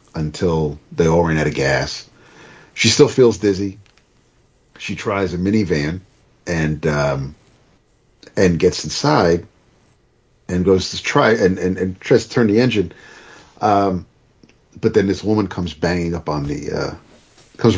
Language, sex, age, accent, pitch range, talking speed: English, male, 40-59, American, 80-110 Hz, 150 wpm